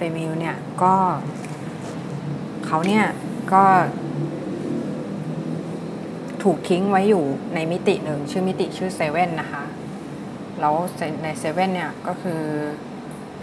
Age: 20-39